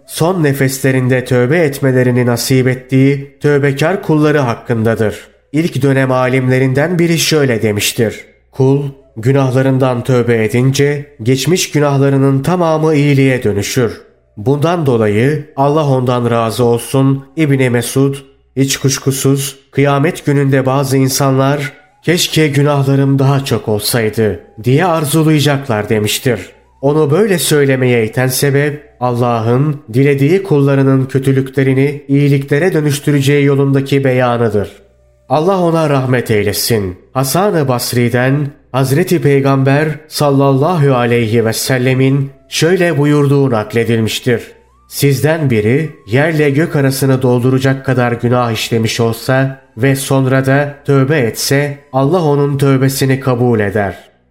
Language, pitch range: Turkish, 125-145 Hz